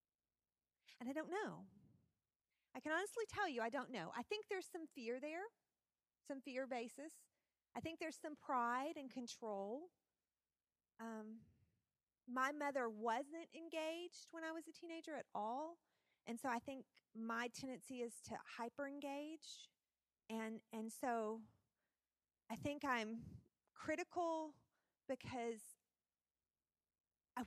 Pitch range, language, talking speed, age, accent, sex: 225-315 Hz, English, 125 wpm, 40-59, American, female